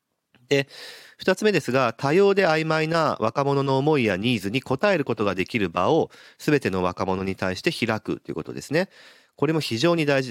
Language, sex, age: Japanese, male, 40-59